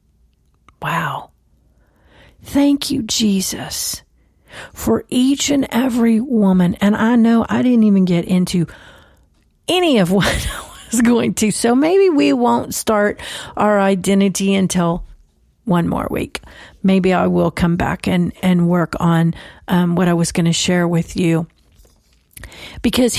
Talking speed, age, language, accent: 140 wpm, 40-59, English, American